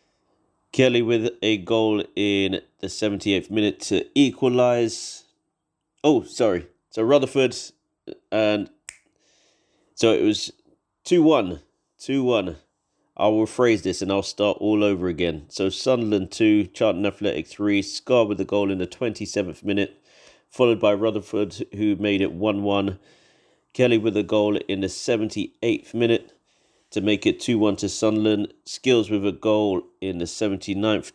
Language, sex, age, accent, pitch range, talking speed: English, male, 30-49, British, 95-110 Hz, 150 wpm